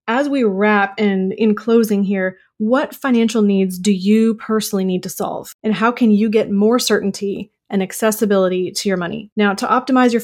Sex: female